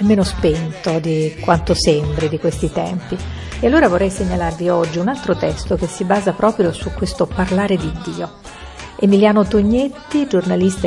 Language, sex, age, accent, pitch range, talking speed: Italian, female, 50-69, native, 165-195 Hz, 155 wpm